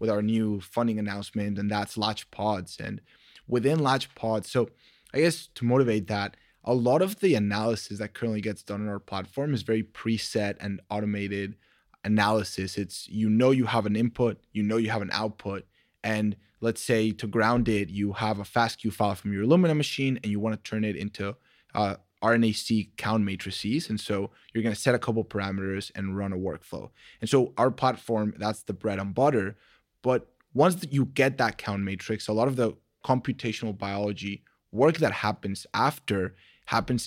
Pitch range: 105-120 Hz